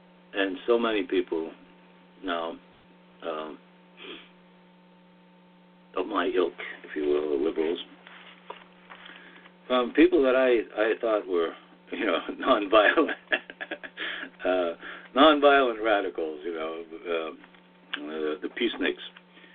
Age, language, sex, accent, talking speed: 60-79, English, male, American, 100 wpm